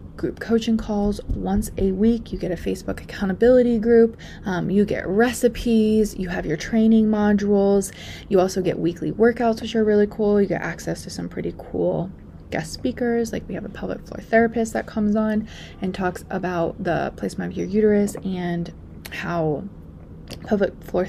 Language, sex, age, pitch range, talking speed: English, female, 20-39, 170-215 Hz, 175 wpm